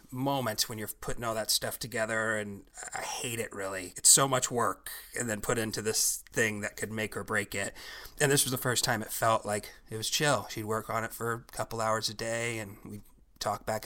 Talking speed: 240 wpm